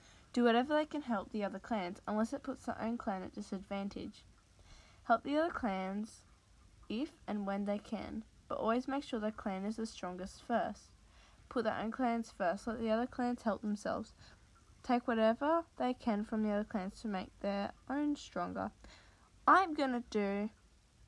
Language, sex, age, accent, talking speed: English, female, 10-29, Australian, 180 wpm